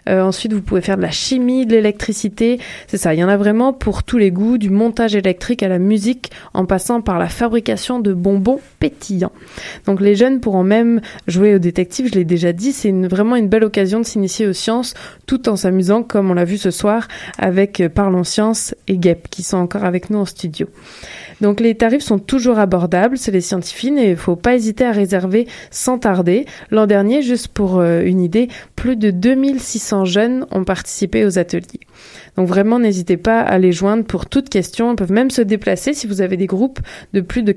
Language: French